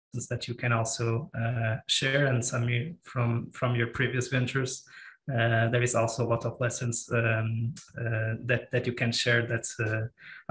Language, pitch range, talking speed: English, 120-135 Hz, 170 wpm